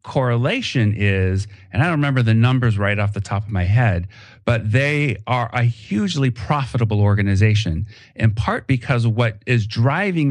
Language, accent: English, American